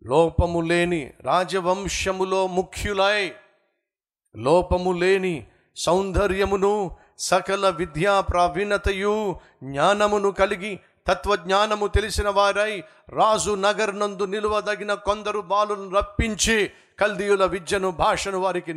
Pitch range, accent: 155-210 Hz, native